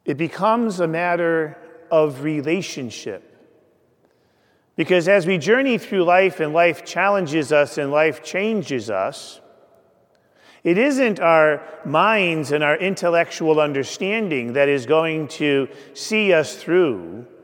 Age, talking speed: 40-59, 120 wpm